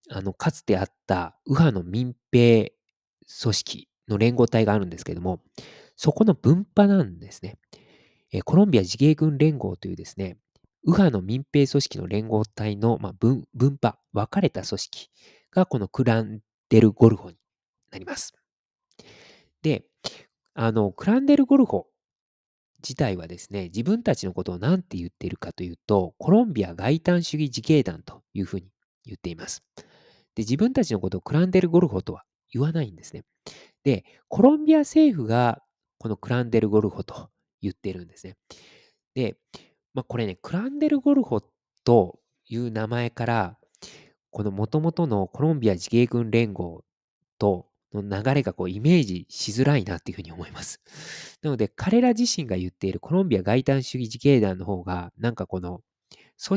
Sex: male